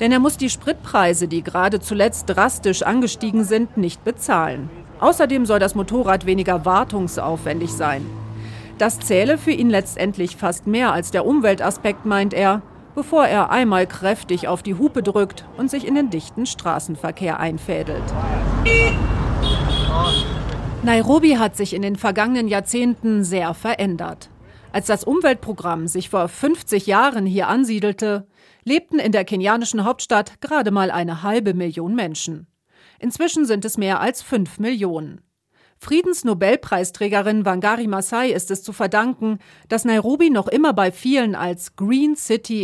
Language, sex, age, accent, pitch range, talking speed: German, female, 40-59, German, 180-235 Hz, 140 wpm